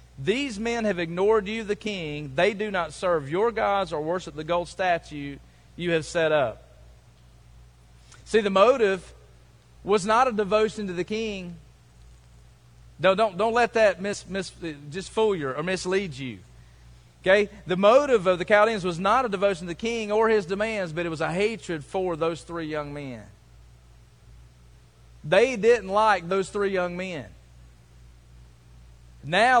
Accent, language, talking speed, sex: American, English, 160 wpm, male